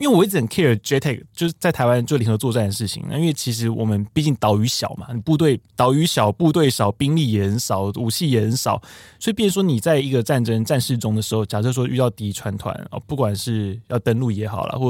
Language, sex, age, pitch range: Chinese, male, 20-39, 110-145 Hz